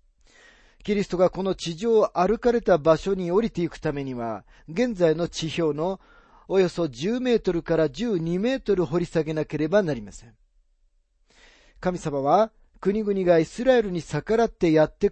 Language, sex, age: Japanese, male, 40-59